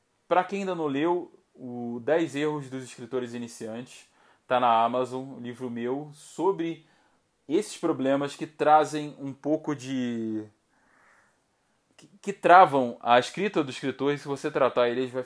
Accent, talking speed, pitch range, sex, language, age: Brazilian, 140 wpm, 125-160 Hz, male, Portuguese, 20-39